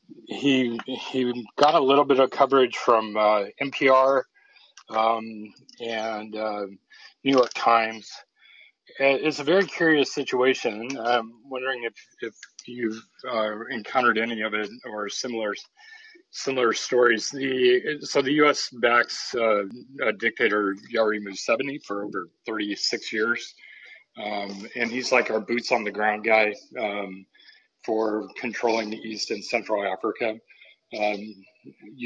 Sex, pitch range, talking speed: male, 110-140 Hz, 130 wpm